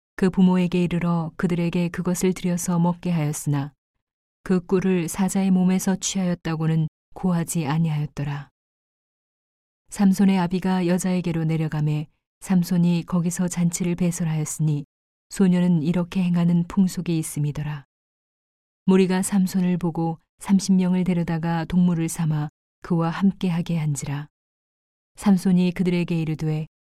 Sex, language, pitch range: female, Korean, 160-180 Hz